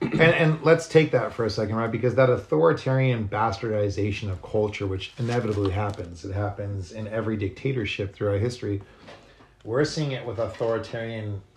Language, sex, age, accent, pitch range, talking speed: English, male, 30-49, American, 100-120 Hz, 155 wpm